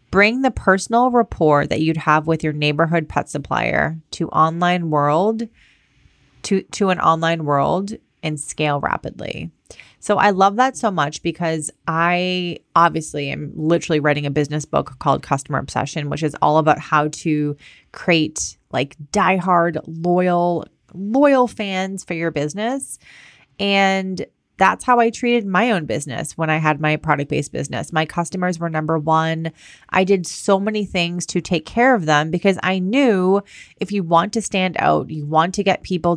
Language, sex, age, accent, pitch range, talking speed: English, female, 30-49, American, 155-190 Hz, 165 wpm